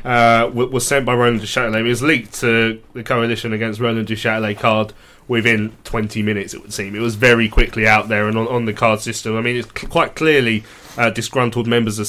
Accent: British